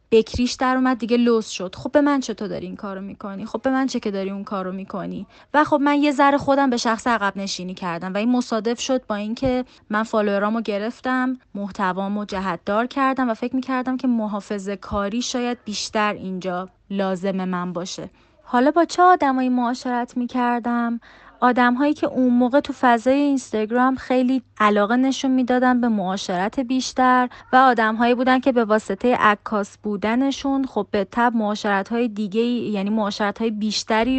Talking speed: 170 wpm